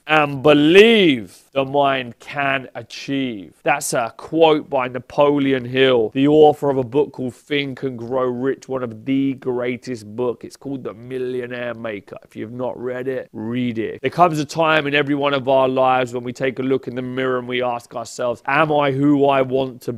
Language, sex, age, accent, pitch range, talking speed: English, male, 30-49, British, 130-155 Hz, 200 wpm